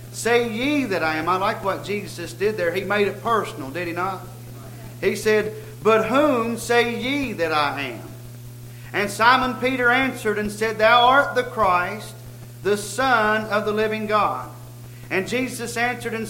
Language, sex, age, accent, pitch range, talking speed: English, male, 40-59, American, 175-240 Hz, 175 wpm